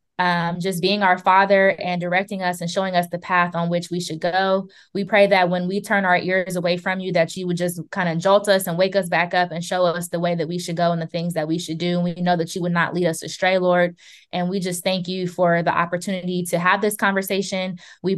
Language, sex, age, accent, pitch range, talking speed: English, female, 20-39, American, 170-185 Hz, 270 wpm